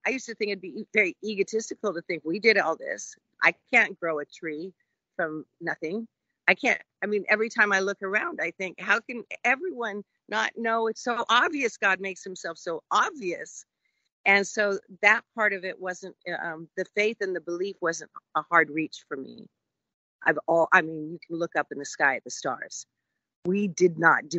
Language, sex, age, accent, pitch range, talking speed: English, female, 50-69, American, 160-200 Hz, 200 wpm